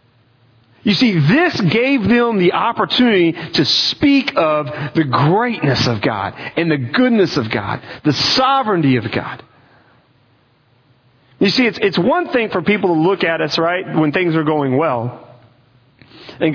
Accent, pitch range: American, 125-180 Hz